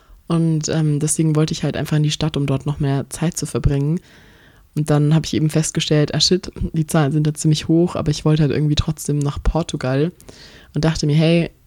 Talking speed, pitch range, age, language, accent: 220 wpm, 145-165 Hz, 20-39, German, German